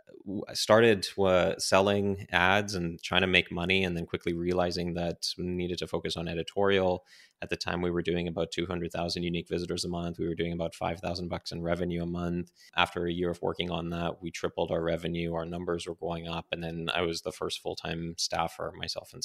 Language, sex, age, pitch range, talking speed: English, male, 20-39, 85-90 Hz, 210 wpm